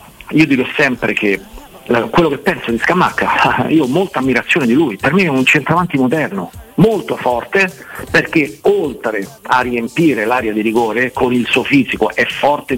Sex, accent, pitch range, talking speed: male, native, 110-145 Hz, 170 wpm